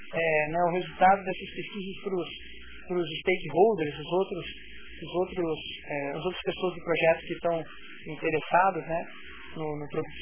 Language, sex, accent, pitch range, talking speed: Portuguese, male, Brazilian, 175-220 Hz, 155 wpm